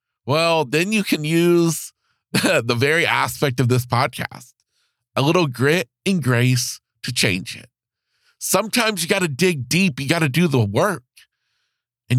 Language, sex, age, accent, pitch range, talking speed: English, male, 40-59, American, 125-170 Hz, 160 wpm